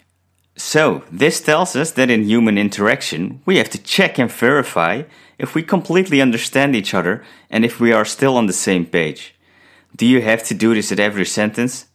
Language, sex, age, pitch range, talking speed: English, male, 30-49, 95-135 Hz, 190 wpm